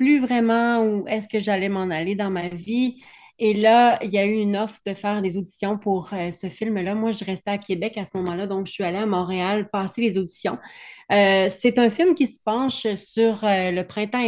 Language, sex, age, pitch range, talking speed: French, female, 30-49, 185-215 Hz, 230 wpm